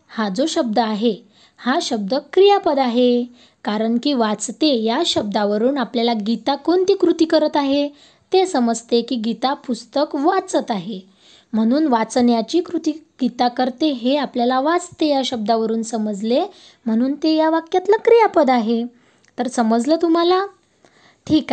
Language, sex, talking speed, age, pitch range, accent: Marathi, female, 130 wpm, 20-39, 230-315 Hz, native